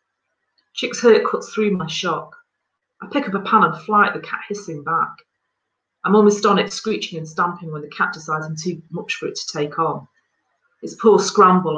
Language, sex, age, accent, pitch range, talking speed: English, female, 40-59, British, 160-210 Hz, 210 wpm